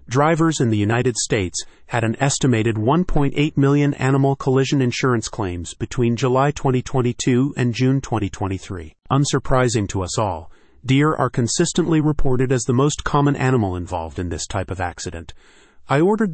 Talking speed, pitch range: 150 wpm, 105-135 Hz